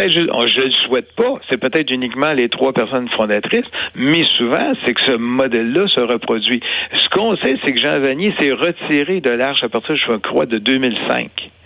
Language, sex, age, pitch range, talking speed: French, male, 60-79, 115-155 Hz, 190 wpm